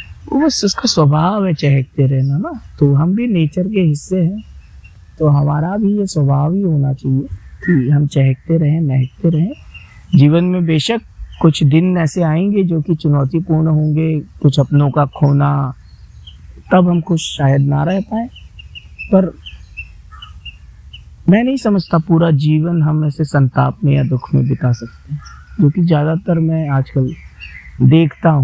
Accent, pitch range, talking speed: native, 125-165 Hz, 150 wpm